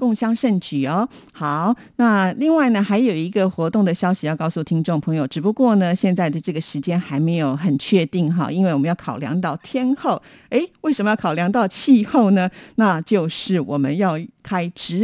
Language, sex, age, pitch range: Chinese, female, 50-69, 155-205 Hz